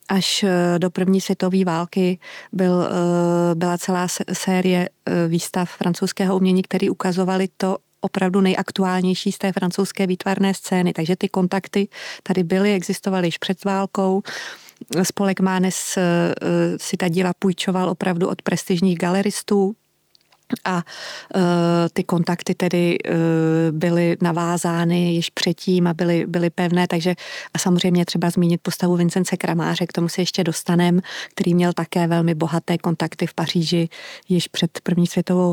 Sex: female